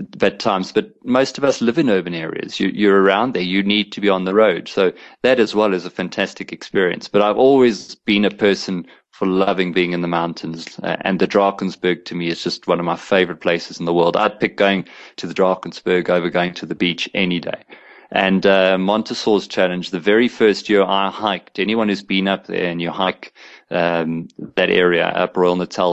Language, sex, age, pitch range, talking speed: English, male, 30-49, 90-100 Hz, 220 wpm